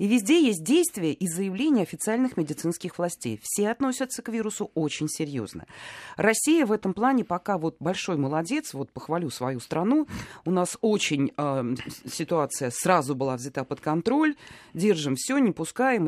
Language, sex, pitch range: Russian, female, 140-210 Hz